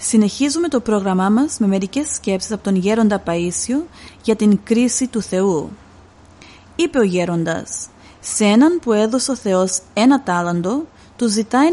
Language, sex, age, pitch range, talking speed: Greek, female, 30-49, 185-255 Hz, 150 wpm